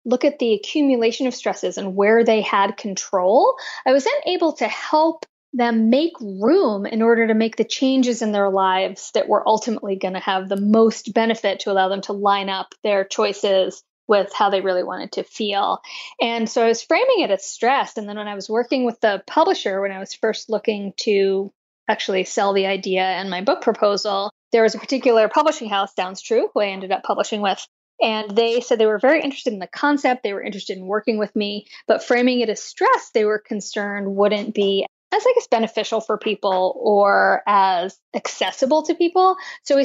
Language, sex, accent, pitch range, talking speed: English, female, American, 200-250 Hz, 205 wpm